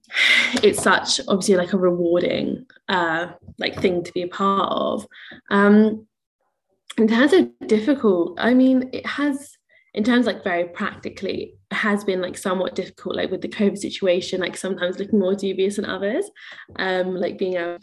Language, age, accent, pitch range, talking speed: English, 10-29, British, 180-220 Hz, 170 wpm